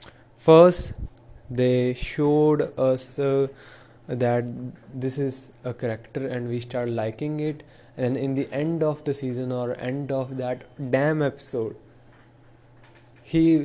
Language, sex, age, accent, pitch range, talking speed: English, male, 20-39, Indian, 120-145 Hz, 125 wpm